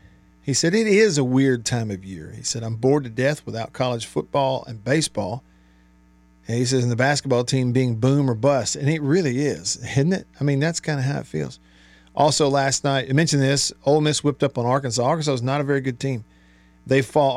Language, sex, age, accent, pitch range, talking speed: English, male, 50-69, American, 115-145 Hz, 230 wpm